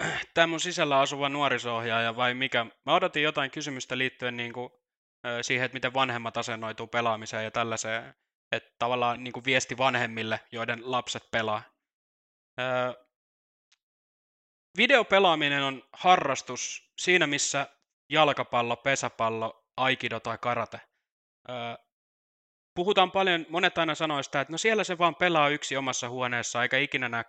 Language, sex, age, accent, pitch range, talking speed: Finnish, male, 20-39, native, 115-145 Hz, 130 wpm